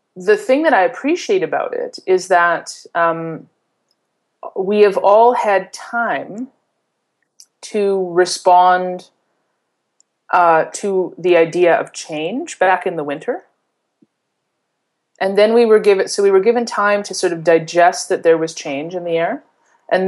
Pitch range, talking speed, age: 170-215 Hz, 145 wpm, 30-49